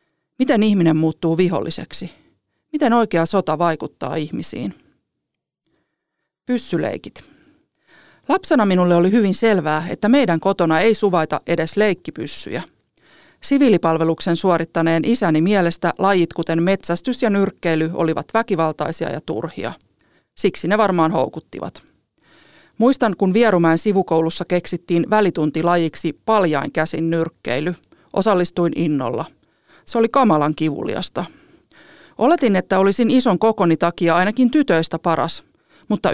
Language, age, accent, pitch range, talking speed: Finnish, 40-59, native, 165-215 Hz, 105 wpm